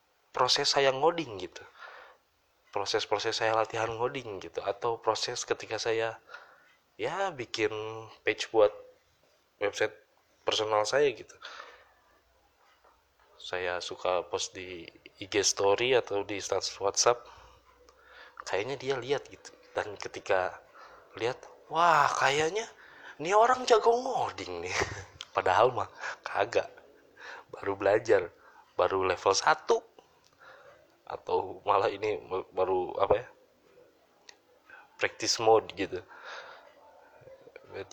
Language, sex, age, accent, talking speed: Indonesian, male, 20-39, native, 100 wpm